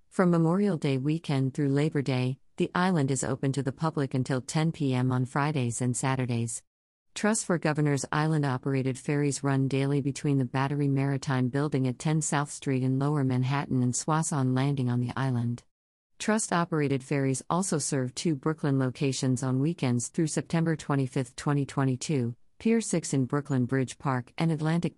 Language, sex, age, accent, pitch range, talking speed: English, female, 50-69, American, 130-160 Hz, 160 wpm